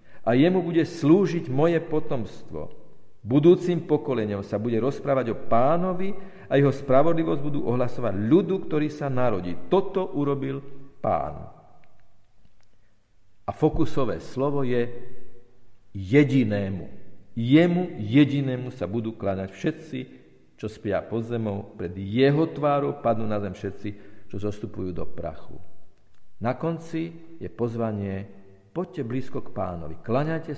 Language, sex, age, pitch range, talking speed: Slovak, male, 50-69, 100-145 Hz, 120 wpm